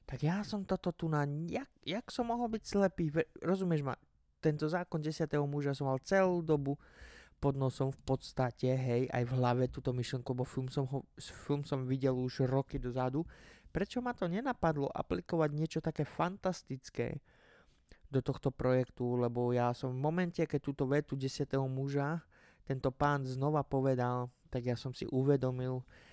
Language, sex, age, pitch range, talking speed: Slovak, male, 20-39, 125-145 Hz, 170 wpm